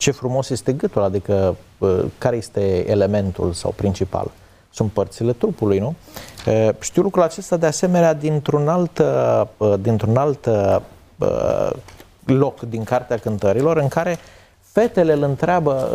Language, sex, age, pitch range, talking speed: Romanian, male, 30-49, 100-155 Hz, 120 wpm